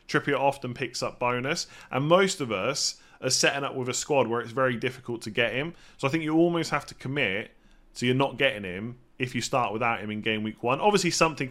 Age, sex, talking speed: 30-49, male, 240 wpm